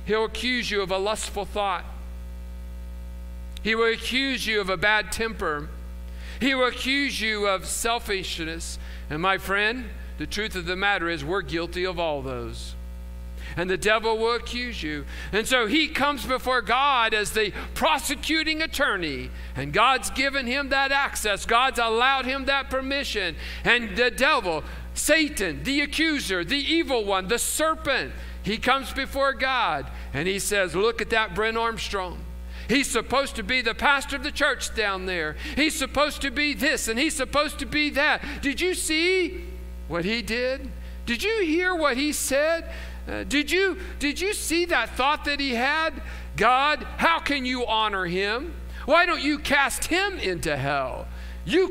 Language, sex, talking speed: English, male, 165 wpm